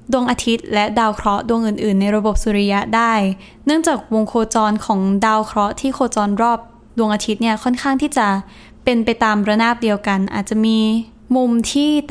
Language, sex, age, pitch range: Thai, female, 10-29, 205-245 Hz